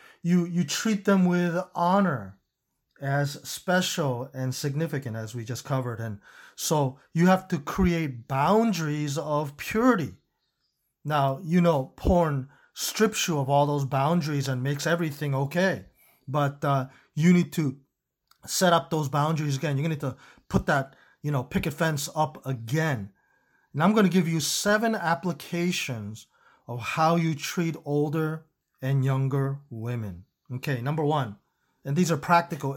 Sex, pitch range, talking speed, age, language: male, 135-170 Hz, 150 wpm, 30-49, English